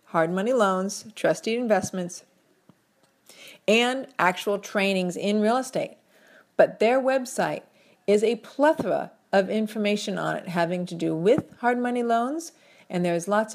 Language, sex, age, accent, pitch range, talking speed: English, female, 40-59, American, 185-250 Hz, 135 wpm